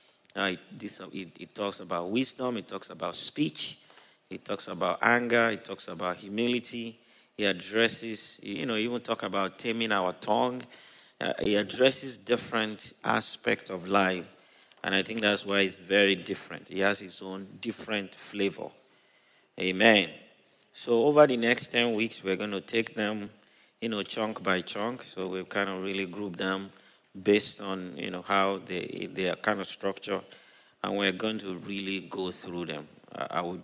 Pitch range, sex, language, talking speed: 95-110 Hz, male, English, 160 wpm